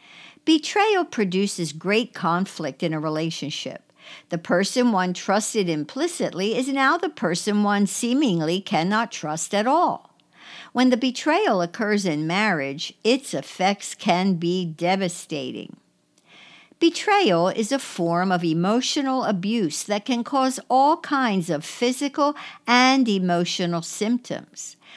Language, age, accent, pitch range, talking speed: English, 60-79, American, 175-255 Hz, 120 wpm